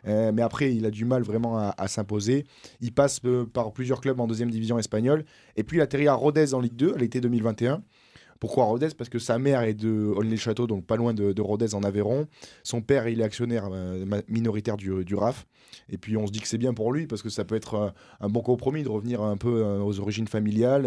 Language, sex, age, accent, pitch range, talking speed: French, male, 20-39, French, 105-125 Hz, 245 wpm